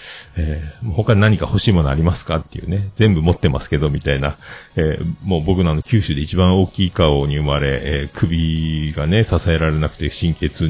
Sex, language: male, Japanese